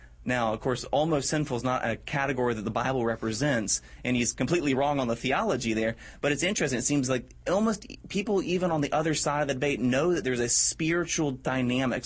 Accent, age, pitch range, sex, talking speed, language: American, 30-49, 120-150 Hz, male, 215 wpm, English